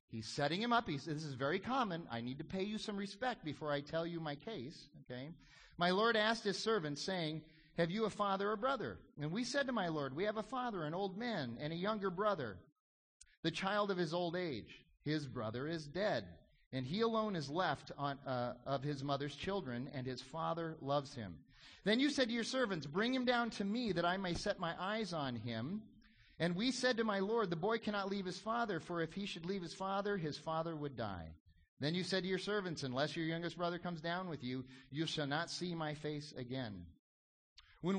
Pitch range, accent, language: 145-200 Hz, American, English